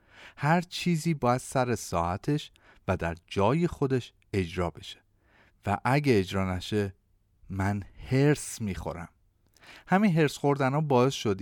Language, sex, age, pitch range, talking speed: Persian, male, 40-59, 100-150 Hz, 125 wpm